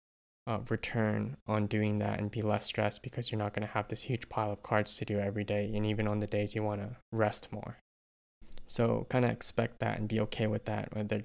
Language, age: English, 20-39